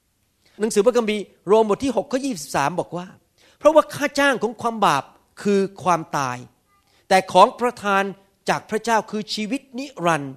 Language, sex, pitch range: Thai, male, 135-215 Hz